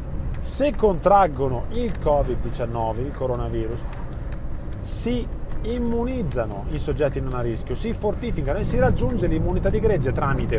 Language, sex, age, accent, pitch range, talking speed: Italian, male, 30-49, native, 130-170 Hz, 125 wpm